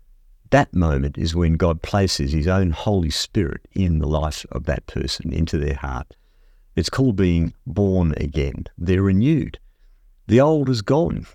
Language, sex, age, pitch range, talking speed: English, male, 50-69, 80-100 Hz, 160 wpm